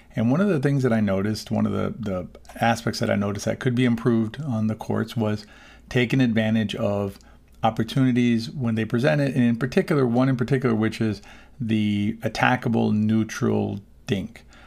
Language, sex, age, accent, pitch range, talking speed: English, male, 40-59, American, 110-125 Hz, 175 wpm